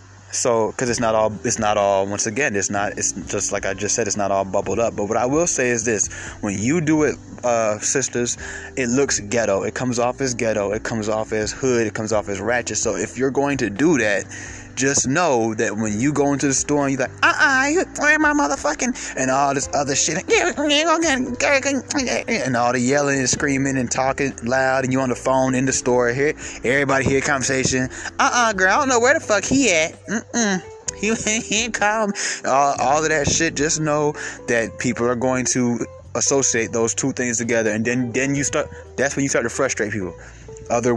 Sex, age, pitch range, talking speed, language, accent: male, 20-39, 105-140 Hz, 215 wpm, English, American